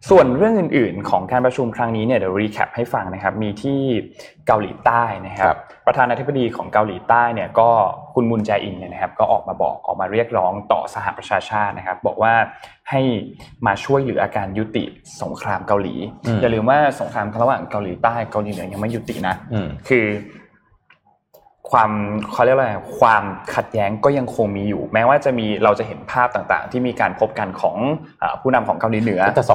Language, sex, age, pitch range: Thai, male, 20-39, 100-125 Hz